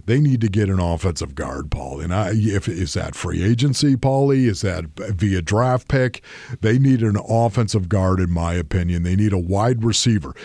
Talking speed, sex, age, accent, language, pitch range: 180 wpm, male, 50-69, American, English, 105-135 Hz